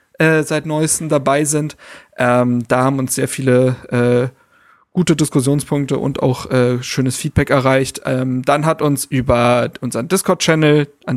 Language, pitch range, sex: German, 130-155 Hz, male